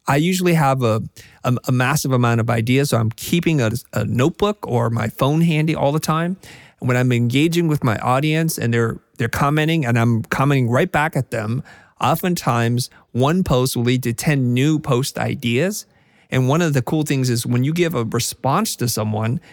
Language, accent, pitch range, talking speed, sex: English, American, 120-150 Hz, 200 wpm, male